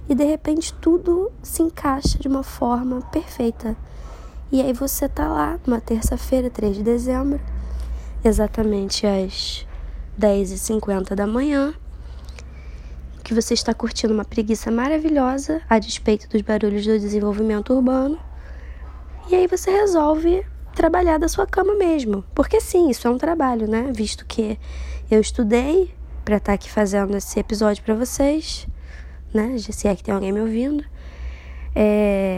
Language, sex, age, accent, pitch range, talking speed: Portuguese, female, 10-29, Brazilian, 195-255 Hz, 140 wpm